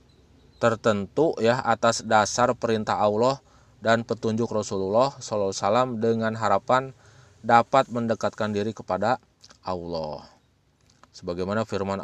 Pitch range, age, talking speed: 100-125 Hz, 20-39, 95 wpm